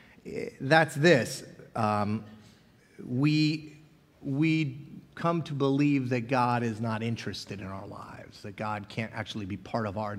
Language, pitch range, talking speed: English, 120-190 Hz, 140 wpm